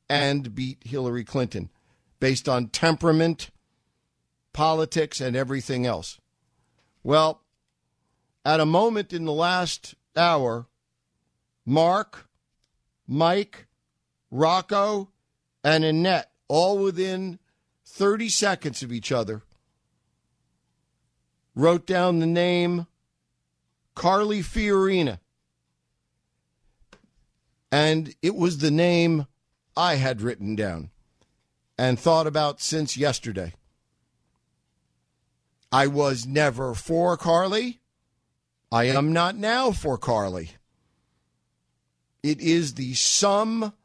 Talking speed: 90 wpm